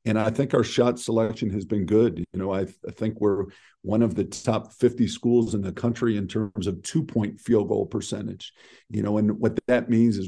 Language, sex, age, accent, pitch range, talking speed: English, male, 50-69, American, 105-120 Hz, 230 wpm